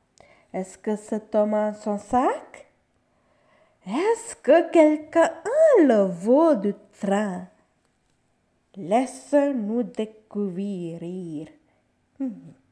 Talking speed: 70 wpm